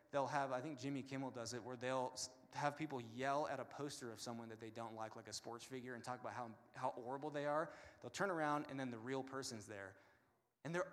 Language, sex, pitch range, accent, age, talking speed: English, male, 120-145 Hz, American, 20-39, 245 wpm